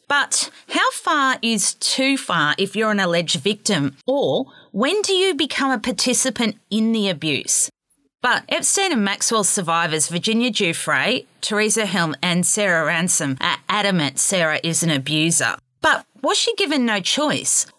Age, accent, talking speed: 30-49, Australian, 150 wpm